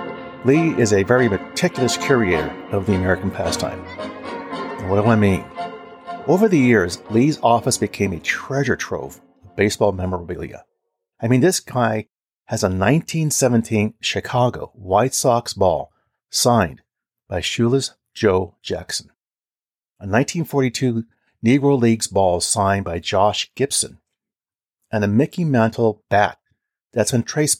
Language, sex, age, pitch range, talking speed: English, male, 40-59, 100-125 Hz, 130 wpm